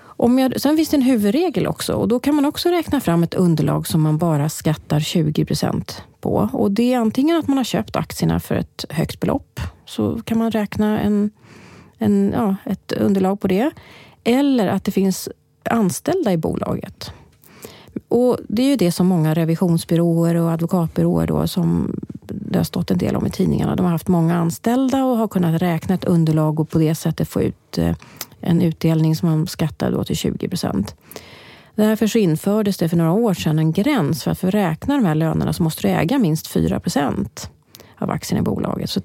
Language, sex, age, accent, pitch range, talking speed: English, female, 30-49, Swedish, 160-220 Hz, 195 wpm